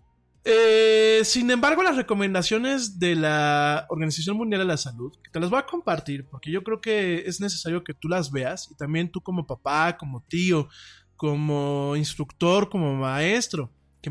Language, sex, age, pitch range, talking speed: Spanish, male, 20-39, 145-185 Hz, 170 wpm